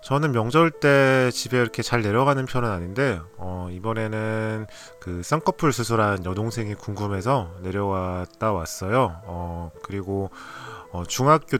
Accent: native